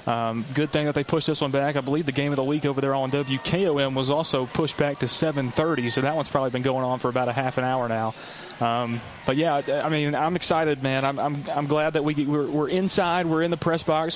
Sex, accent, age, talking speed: male, American, 30-49, 265 wpm